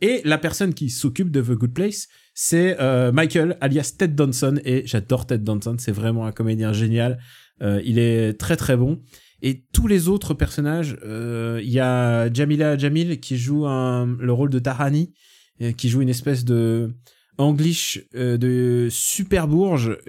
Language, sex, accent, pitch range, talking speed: French, male, French, 120-155 Hz, 175 wpm